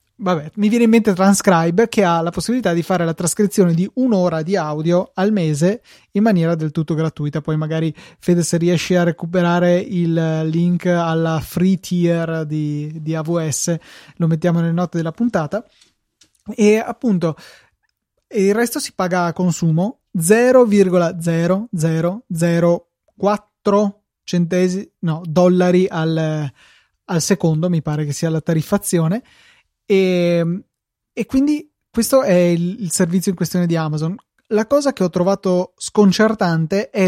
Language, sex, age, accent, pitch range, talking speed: Italian, male, 20-39, native, 165-200 Hz, 140 wpm